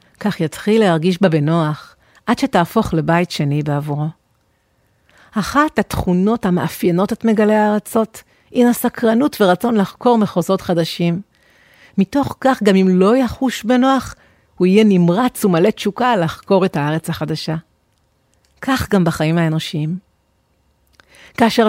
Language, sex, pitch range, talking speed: Hebrew, female, 175-230 Hz, 120 wpm